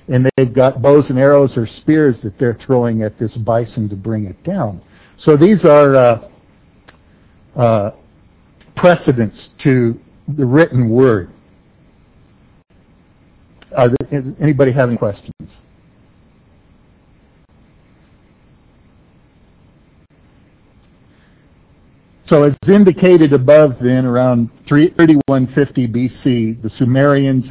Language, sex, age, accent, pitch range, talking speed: English, male, 60-79, American, 115-145 Hz, 95 wpm